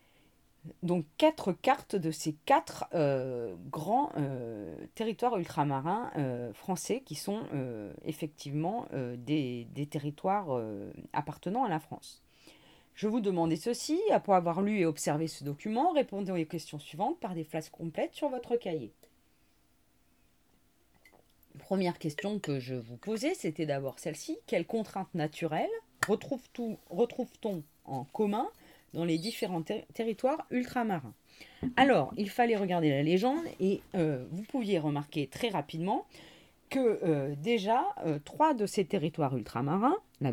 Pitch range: 145-215 Hz